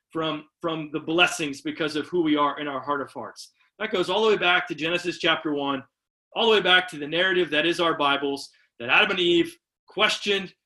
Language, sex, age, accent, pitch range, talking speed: English, male, 30-49, American, 150-185 Hz, 225 wpm